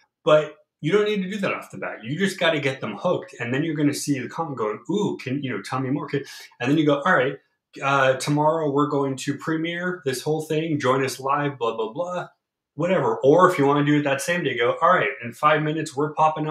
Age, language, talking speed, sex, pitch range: 30-49, English, 255 wpm, male, 120-150 Hz